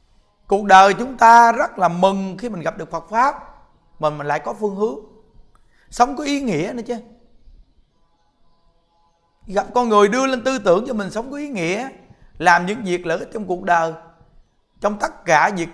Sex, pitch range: male, 155-210 Hz